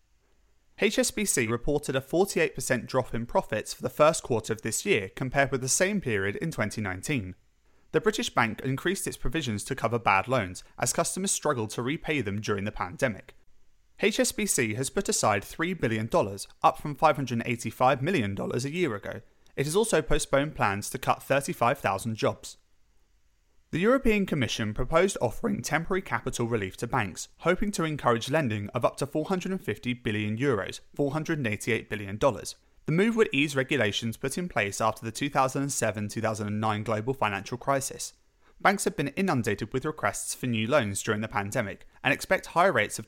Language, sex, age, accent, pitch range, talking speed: English, male, 30-49, British, 110-155 Hz, 160 wpm